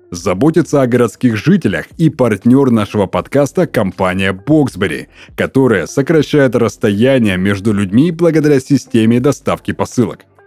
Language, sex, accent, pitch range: Russian, male, native, 105-140 Hz